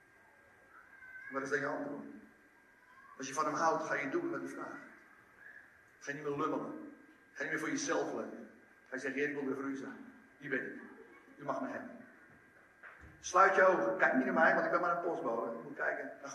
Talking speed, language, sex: 215 wpm, Dutch, male